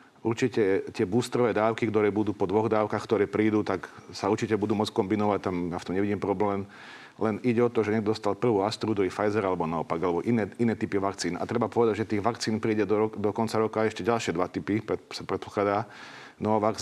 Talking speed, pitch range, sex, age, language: 215 wpm, 105-115 Hz, male, 50-69, Slovak